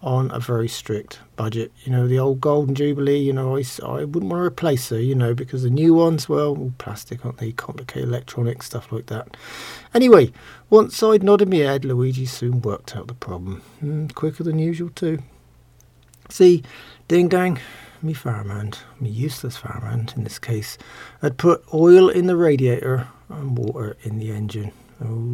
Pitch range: 115-150 Hz